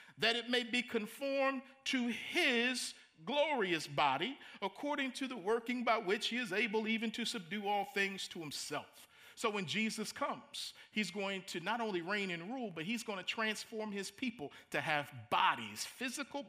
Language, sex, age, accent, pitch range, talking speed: English, male, 50-69, American, 195-250 Hz, 175 wpm